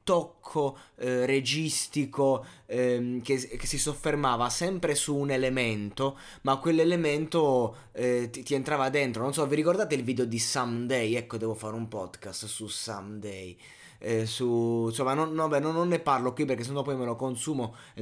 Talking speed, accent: 175 wpm, native